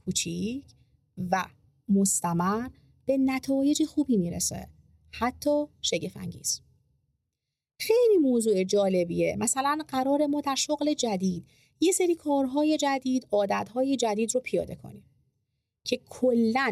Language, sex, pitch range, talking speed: Persian, female, 185-270 Hz, 100 wpm